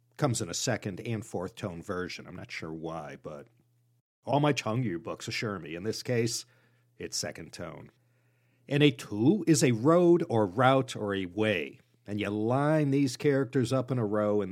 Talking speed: 195 wpm